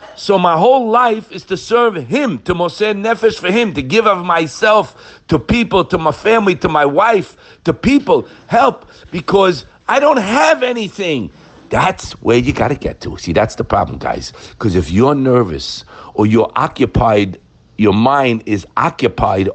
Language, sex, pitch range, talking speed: English, male, 105-175 Hz, 170 wpm